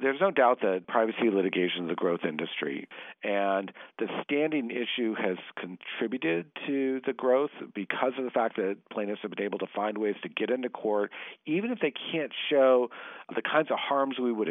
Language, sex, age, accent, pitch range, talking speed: English, male, 50-69, American, 100-130 Hz, 190 wpm